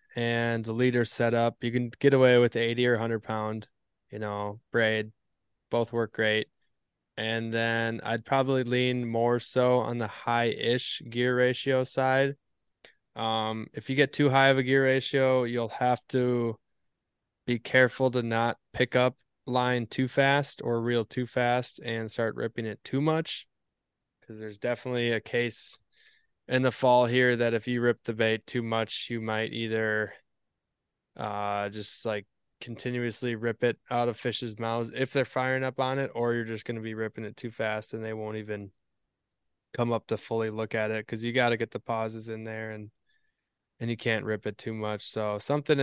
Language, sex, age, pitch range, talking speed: English, male, 20-39, 110-125 Hz, 185 wpm